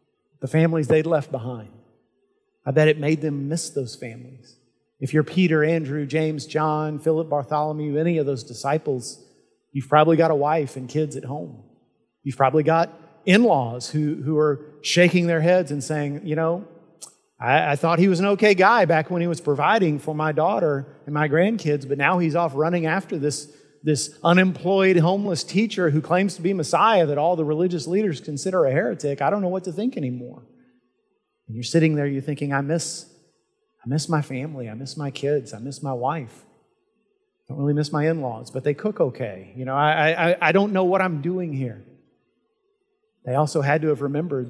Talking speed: 195 wpm